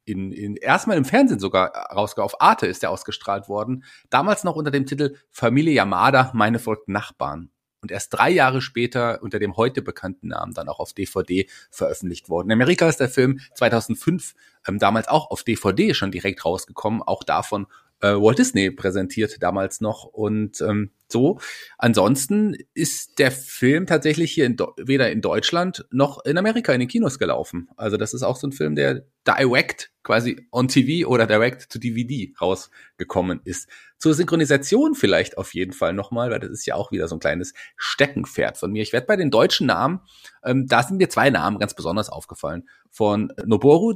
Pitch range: 105-145 Hz